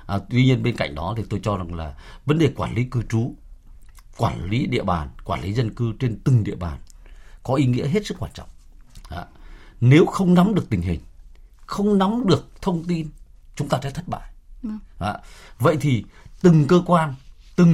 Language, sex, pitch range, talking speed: Vietnamese, male, 90-150 Hz, 205 wpm